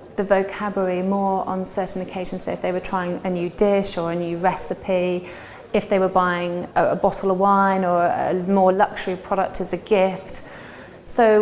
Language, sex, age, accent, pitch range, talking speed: English, female, 30-49, British, 180-205 Hz, 195 wpm